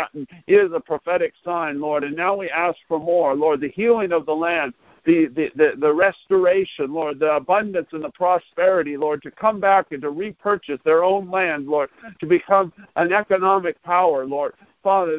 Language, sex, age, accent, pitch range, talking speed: English, male, 50-69, American, 160-195 Hz, 180 wpm